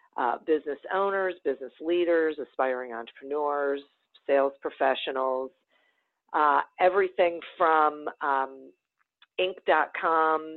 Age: 50-69